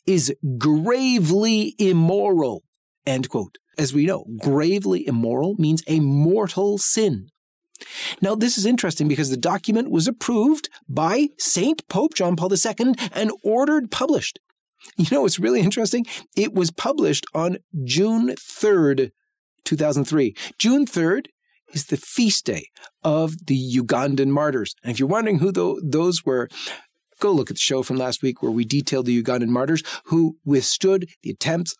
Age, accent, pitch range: 40-59, American, 135-205 Hz